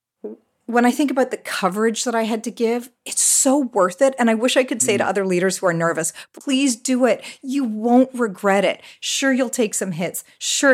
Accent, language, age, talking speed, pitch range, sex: American, English, 40-59, 225 wpm, 175-235 Hz, female